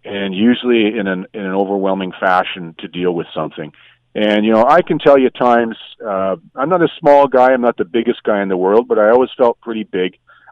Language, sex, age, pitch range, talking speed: English, male, 40-59, 95-125 Hz, 230 wpm